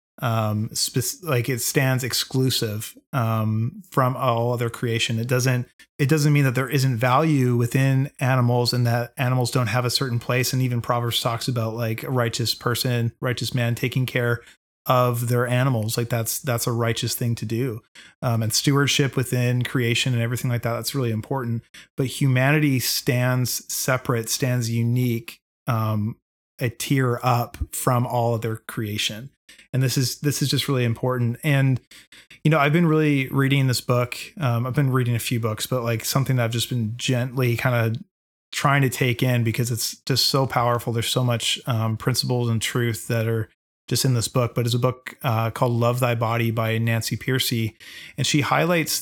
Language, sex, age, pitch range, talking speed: English, male, 30-49, 115-130 Hz, 185 wpm